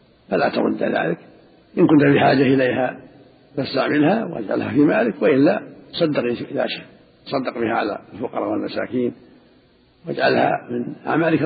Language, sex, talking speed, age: Arabic, male, 115 wpm, 60-79